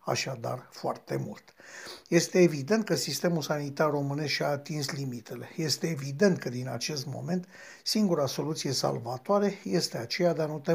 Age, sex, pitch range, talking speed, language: 60-79, male, 145-200 Hz, 150 wpm, Romanian